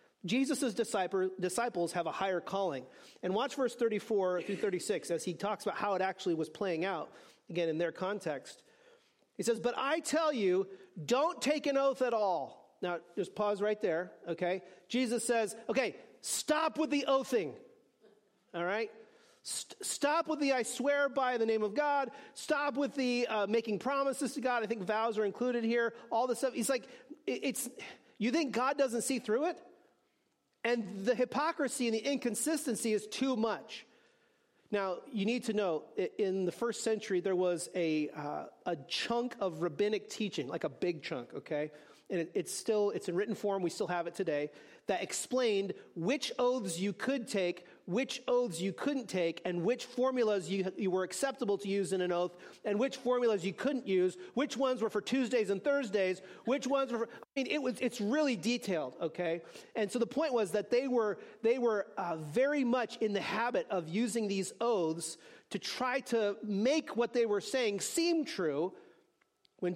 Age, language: 40-59, English